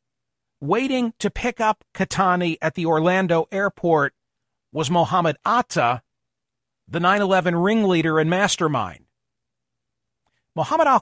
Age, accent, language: 50-69, American, English